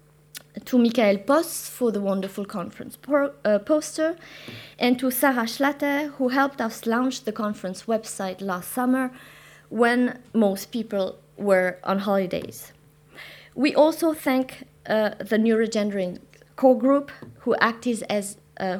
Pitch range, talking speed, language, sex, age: 195-255 Hz, 130 wpm, French, female, 20-39